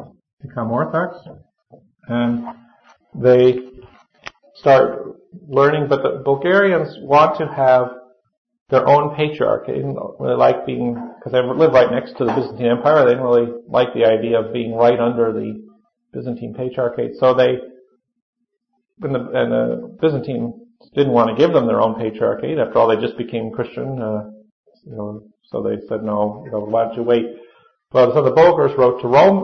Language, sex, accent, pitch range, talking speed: English, male, American, 120-150 Hz, 165 wpm